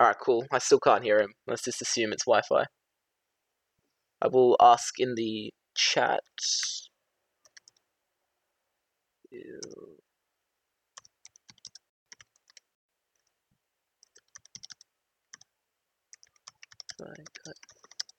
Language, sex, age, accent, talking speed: English, male, 20-39, Australian, 65 wpm